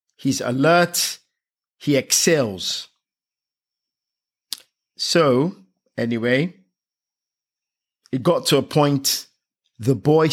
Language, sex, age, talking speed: English, male, 50-69, 75 wpm